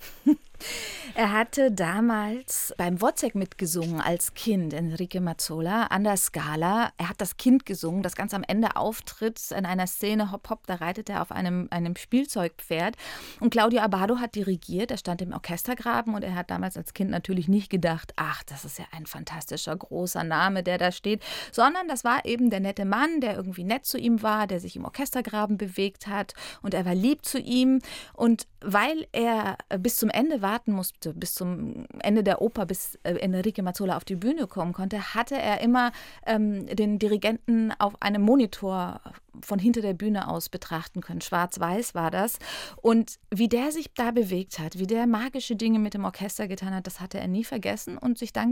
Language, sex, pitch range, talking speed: German, female, 180-230 Hz, 190 wpm